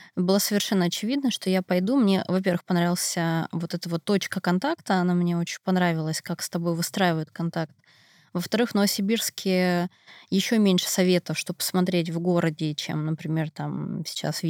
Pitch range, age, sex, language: 170-195 Hz, 20-39, female, Russian